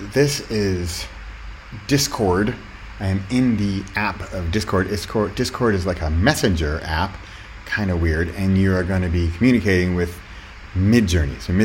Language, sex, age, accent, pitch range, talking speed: English, male, 30-49, American, 90-125 Hz, 140 wpm